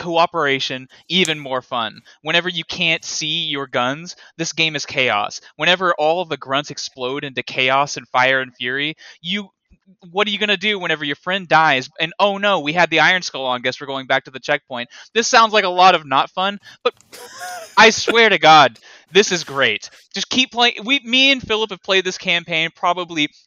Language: English